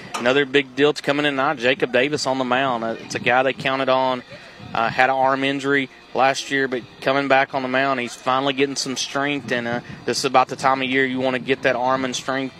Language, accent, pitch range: English, American, 130-140 Hz